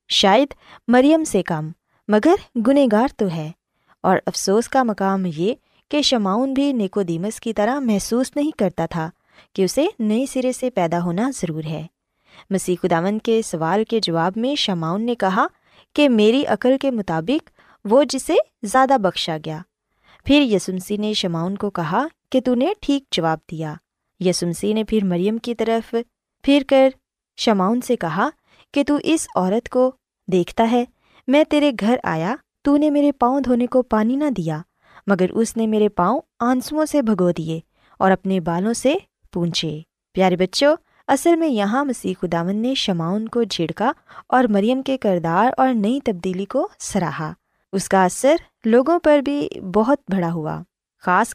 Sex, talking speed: female, 165 wpm